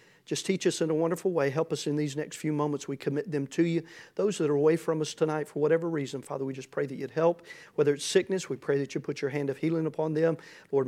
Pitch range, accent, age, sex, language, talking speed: 150-190 Hz, American, 40-59, male, English, 280 wpm